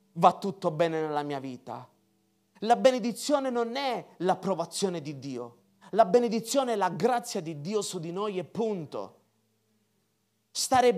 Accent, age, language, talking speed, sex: native, 30-49, Italian, 140 wpm, male